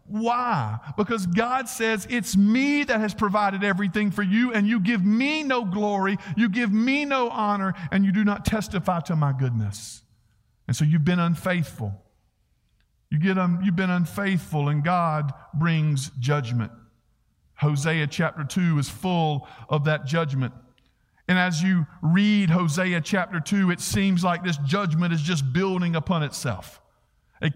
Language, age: English, 50-69